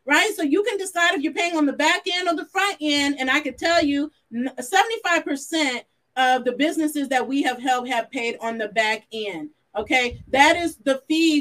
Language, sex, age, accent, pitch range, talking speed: English, female, 40-59, American, 255-305 Hz, 210 wpm